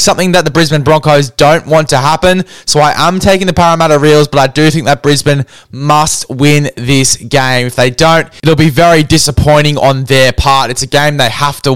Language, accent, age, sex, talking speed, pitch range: English, Australian, 10-29, male, 215 wpm, 130-160 Hz